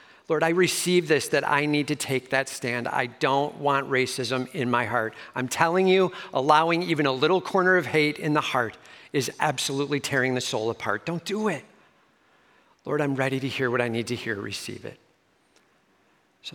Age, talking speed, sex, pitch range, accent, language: 50-69, 190 wpm, male, 130-170 Hz, American, English